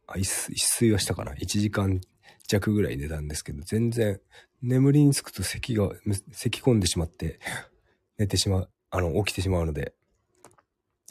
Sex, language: male, Japanese